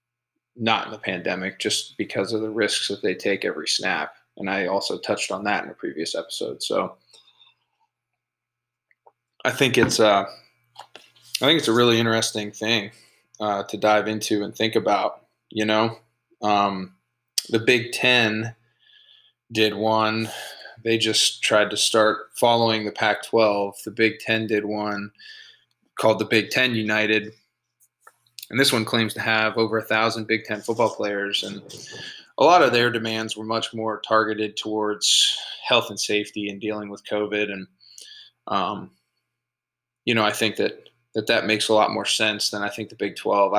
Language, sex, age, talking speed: English, male, 20-39, 165 wpm